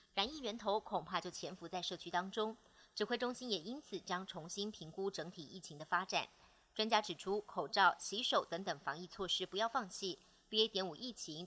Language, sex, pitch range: Chinese, male, 175-225 Hz